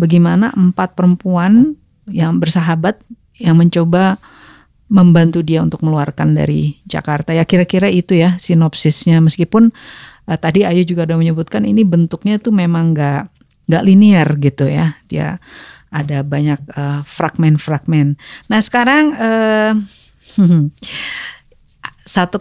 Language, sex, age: Indonesian, female, 50-69